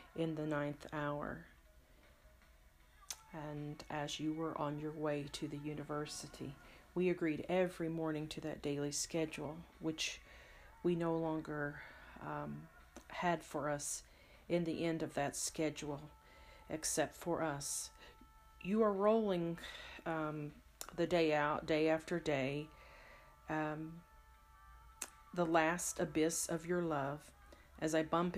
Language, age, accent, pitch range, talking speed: English, 40-59, American, 145-170 Hz, 125 wpm